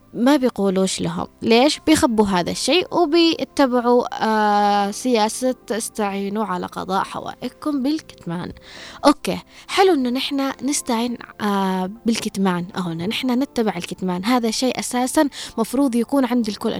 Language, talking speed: Arabic, 120 wpm